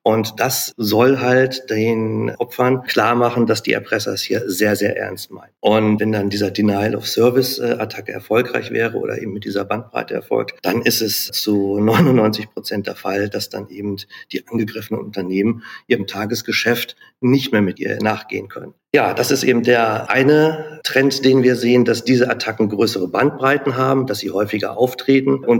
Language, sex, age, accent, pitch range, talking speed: German, male, 50-69, German, 105-130 Hz, 170 wpm